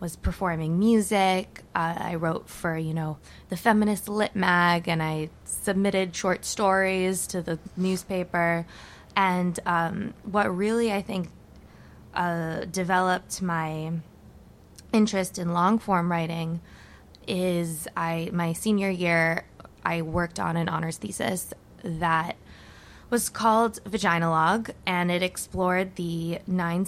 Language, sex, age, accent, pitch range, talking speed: English, female, 20-39, American, 165-190 Hz, 125 wpm